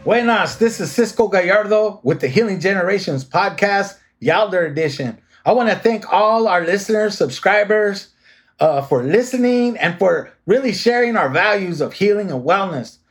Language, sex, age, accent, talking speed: English, male, 30-49, American, 150 wpm